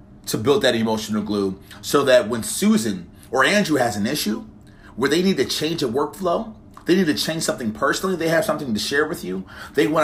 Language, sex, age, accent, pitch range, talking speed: English, male, 30-49, American, 105-135 Hz, 215 wpm